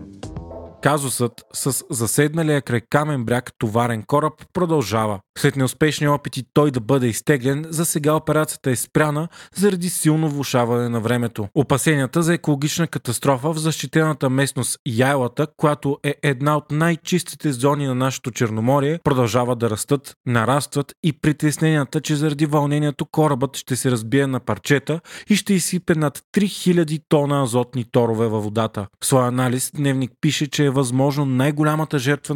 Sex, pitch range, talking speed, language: male, 125-150 Hz, 145 wpm, Bulgarian